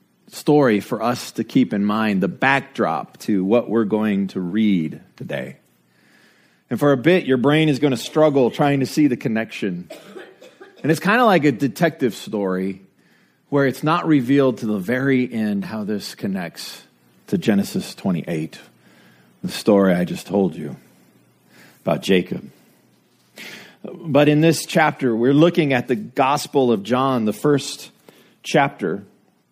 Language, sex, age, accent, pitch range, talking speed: English, male, 40-59, American, 100-155 Hz, 150 wpm